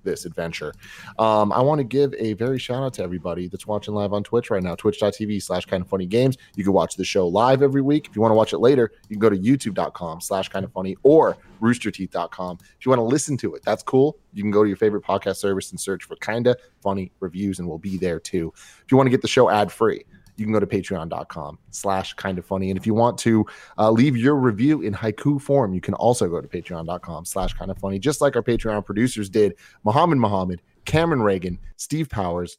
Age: 30-49